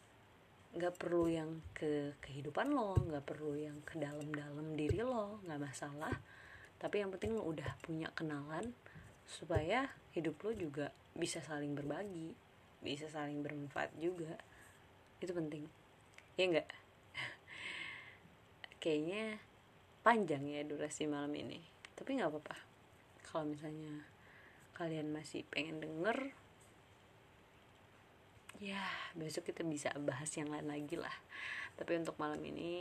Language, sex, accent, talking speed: Indonesian, female, native, 120 wpm